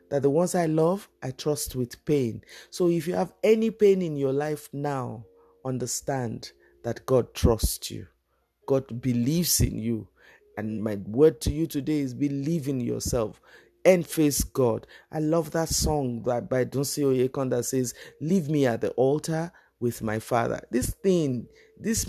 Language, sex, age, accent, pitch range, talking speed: English, male, 50-69, Nigerian, 120-165 Hz, 165 wpm